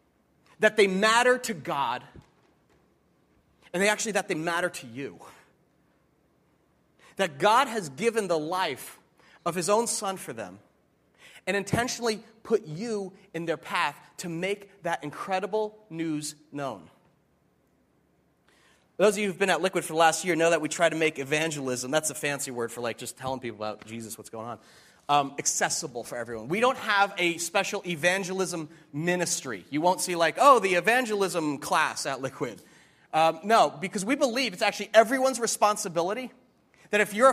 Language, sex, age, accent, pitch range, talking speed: English, male, 30-49, American, 165-210 Hz, 165 wpm